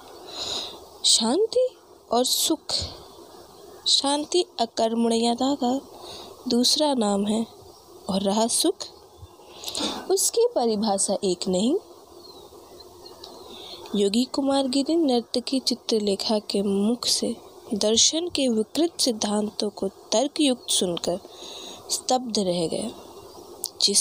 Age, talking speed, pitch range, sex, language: 20-39, 85 wpm, 215-365 Hz, female, Hindi